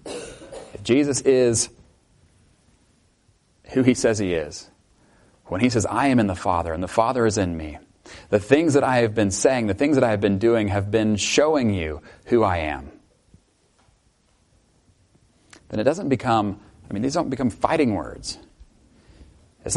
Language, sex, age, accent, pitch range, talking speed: English, male, 30-49, American, 100-130 Hz, 165 wpm